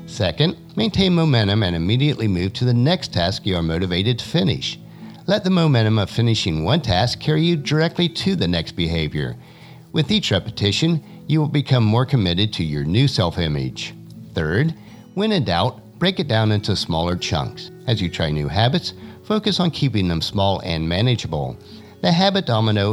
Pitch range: 90-150 Hz